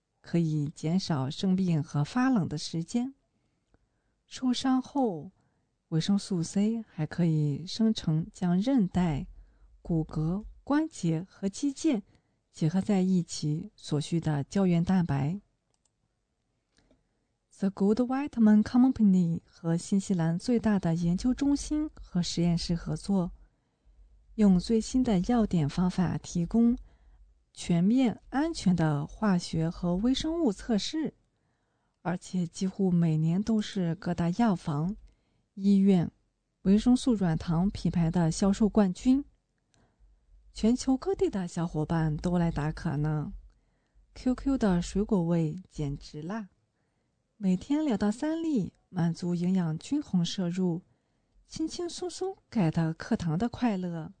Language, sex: English, female